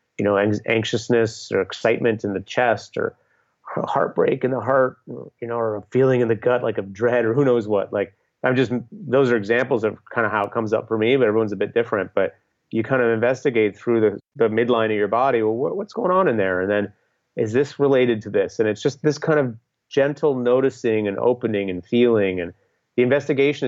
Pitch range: 110-130 Hz